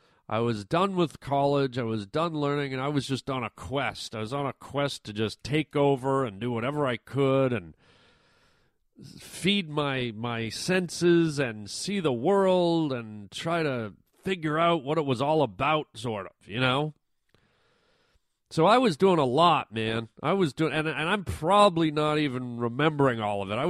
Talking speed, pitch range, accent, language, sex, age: 185 wpm, 120-160 Hz, American, English, male, 40-59